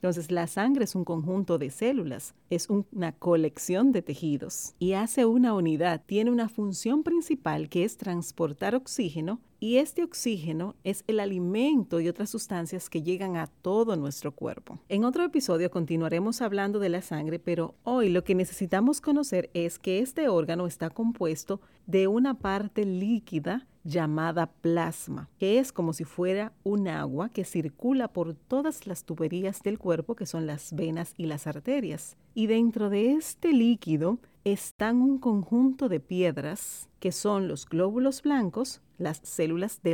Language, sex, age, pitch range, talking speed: Spanish, female, 40-59, 165-230 Hz, 160 wpm